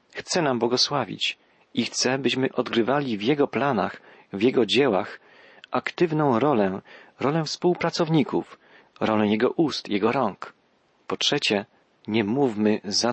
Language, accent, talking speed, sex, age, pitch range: Polish, native, 125 wpm, male, 40-59, 110-145 Hz